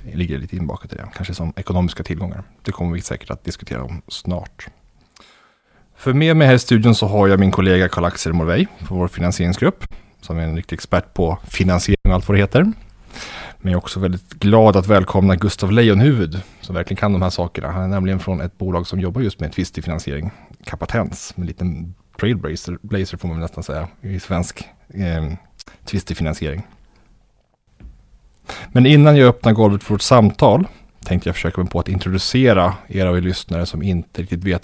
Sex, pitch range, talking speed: male, 90-100 Hz, 190 wpm